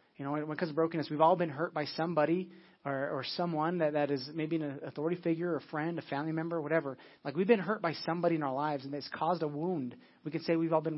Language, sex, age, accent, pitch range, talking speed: English, male, 30-49, American, 150-180 Hz, 270 wpm